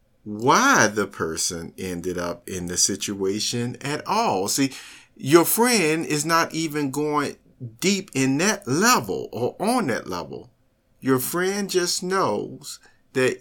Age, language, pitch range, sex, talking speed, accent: 50-69, English, 110-165 Hz, male, 135 wpm, American